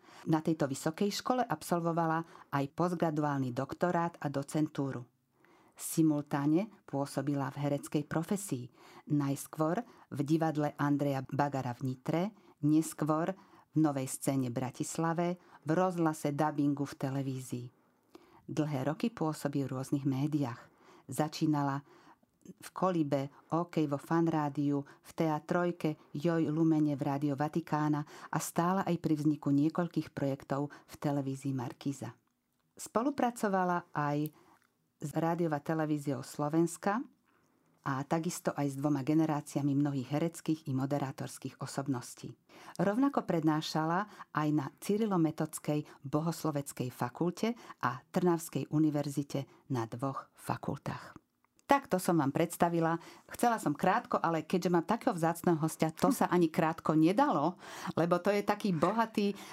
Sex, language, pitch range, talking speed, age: female, Slovak, 145-170 Hz, 115 wpm, 50-69